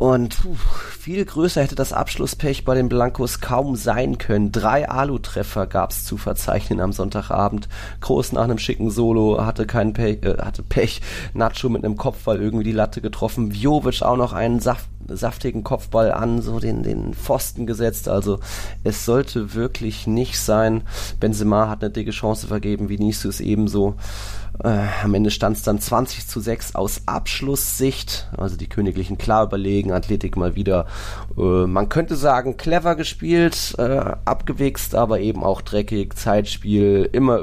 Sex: male